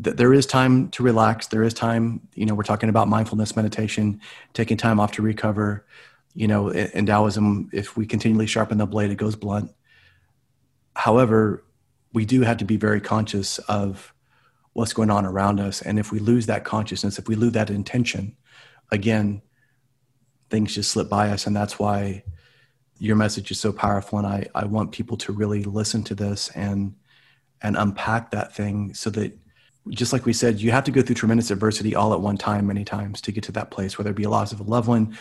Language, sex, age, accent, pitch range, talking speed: English, male, 30-49, American, 105-125 Hz, 205 wpm